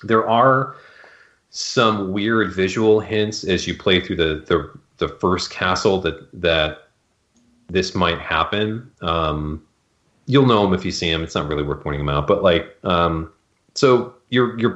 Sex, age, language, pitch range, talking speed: male, 30-49, English, 80-95 Hz, 165 wpm